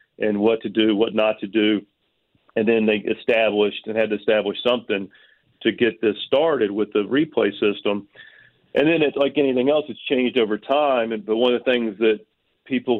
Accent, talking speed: American, 200 wpm